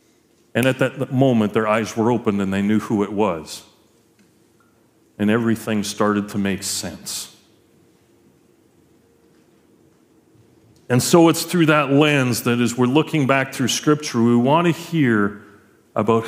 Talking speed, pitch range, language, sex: 140 wpm, 115-175 Hz, English, male